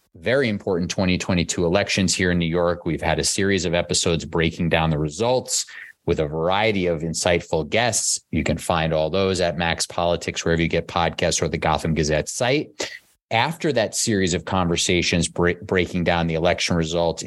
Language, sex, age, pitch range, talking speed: English, male, 30-49, 85-100 Hz, 175 wpm